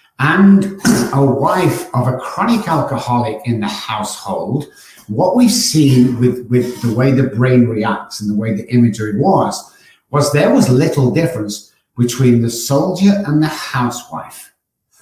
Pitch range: 115-150 Hz